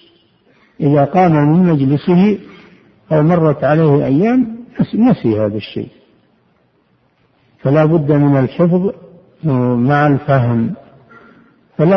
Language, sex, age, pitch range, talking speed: Arabic, male, 60-79, 130-160 Hz, 90 wpm